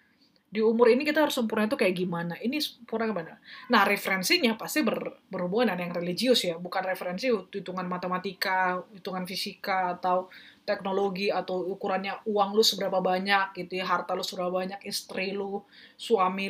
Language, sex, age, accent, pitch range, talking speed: Indonesian, female, 20-39, native, 185-240 Hz, 155 wpm